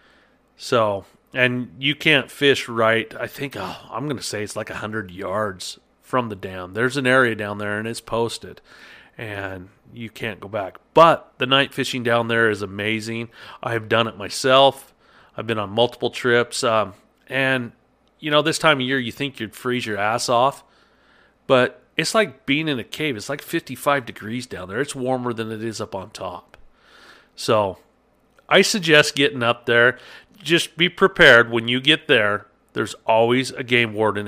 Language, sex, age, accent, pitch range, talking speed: English, male, 40-59, American, 105-130 Hz, 180 wpm